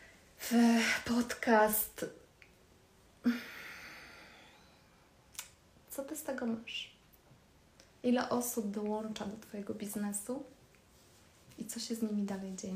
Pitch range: 205-230 Hz